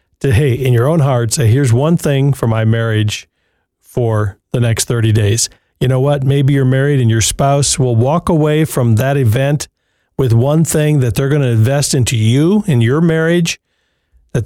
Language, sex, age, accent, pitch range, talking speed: English, male, 50-69, American, 115-150 Hz, 190 wpm